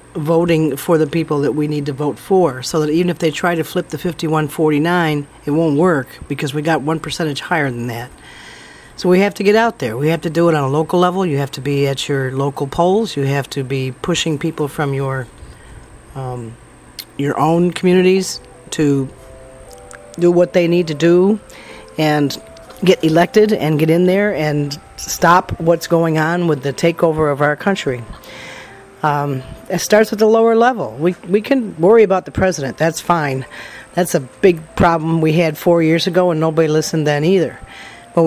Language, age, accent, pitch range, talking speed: English, 40-59, American, 145-180 Hz, 195 wpm